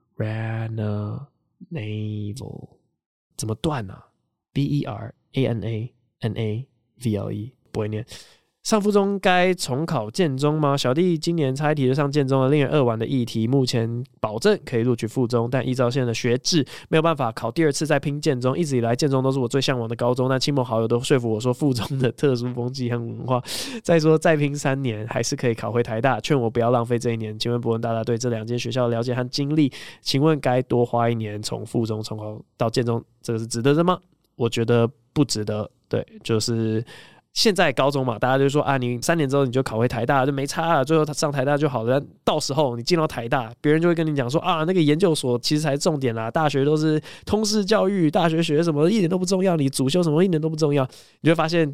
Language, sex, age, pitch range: Chinese, male, 20-39, 115-155 Hz